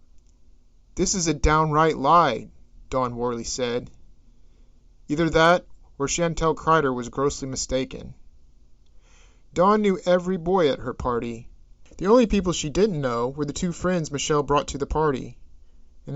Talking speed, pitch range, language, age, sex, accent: 145 wpm, 115-155 Hz, English, 40-59, male, American